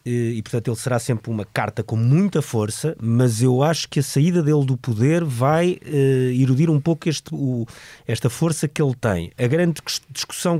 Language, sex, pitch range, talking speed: Portuguese, male, 110-150 Hz, 190 wpm